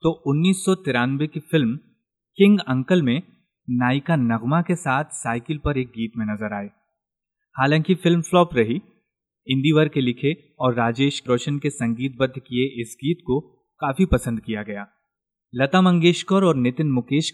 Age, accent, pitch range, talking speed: 30-49, native, 125-170 Hz, 150 wpm